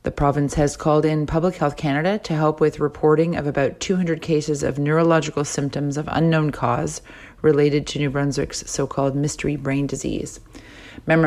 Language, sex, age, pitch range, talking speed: English, female, 30-49, 140-160 Hz, 165 wpm